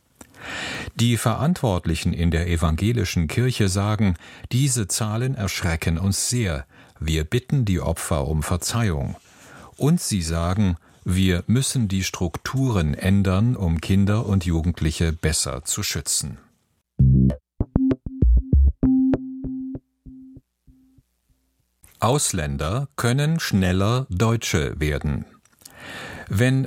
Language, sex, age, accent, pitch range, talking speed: German, male, 50-69, German, 85-120 Hz, 90 wpm